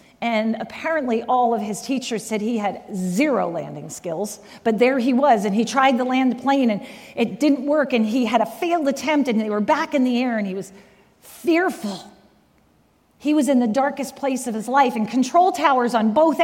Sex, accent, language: female, American, English